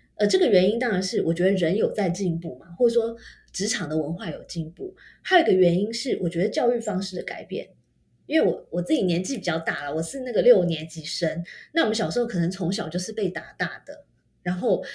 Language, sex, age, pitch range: Chinese, female, 20-39, 175-250 Hz